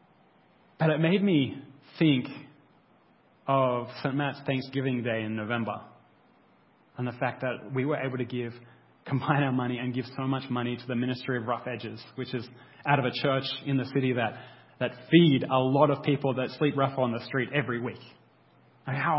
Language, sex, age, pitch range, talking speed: English, male, 30-49, 125-150 Hz, 190 wpm